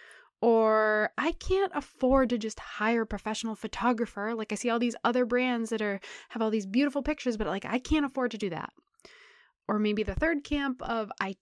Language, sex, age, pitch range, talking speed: English, female, 20-39, 210-255 Hz, 205 wpm